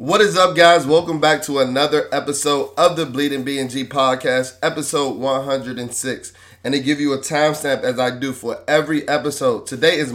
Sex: male